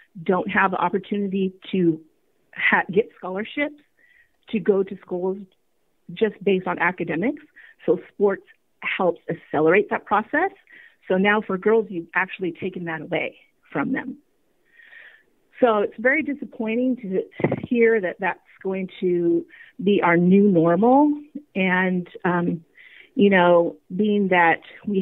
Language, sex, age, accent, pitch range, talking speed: English, female, 40-59, American, 180-255 Hz, 130 wpm